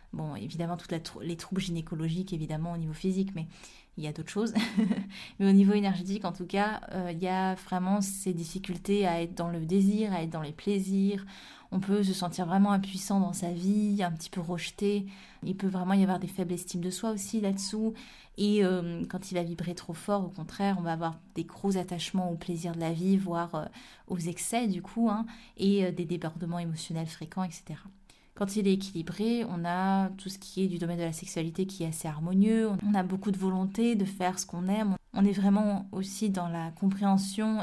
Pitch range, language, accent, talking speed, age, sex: 175-200 Hz, French, French, 215 wpm, 20-39, female